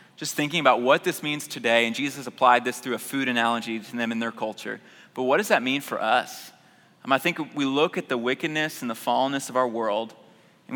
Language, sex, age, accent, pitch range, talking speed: English, male, 20-39, American, 115-135 Hz, 235 wpm